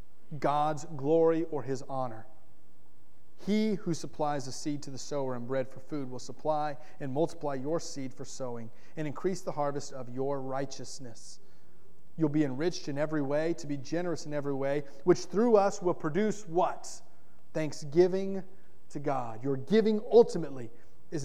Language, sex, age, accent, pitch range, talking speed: English, male, 30-49, American, 145-190 Hz, 160 wpm